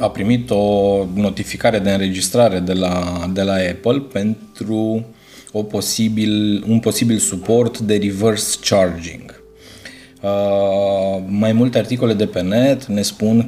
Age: 20-39